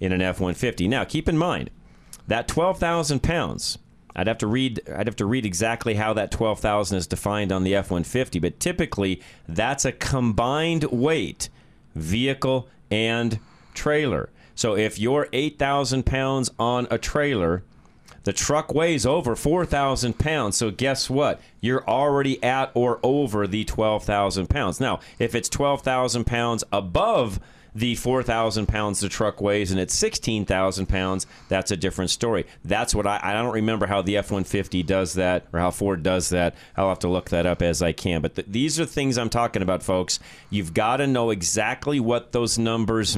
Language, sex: English, male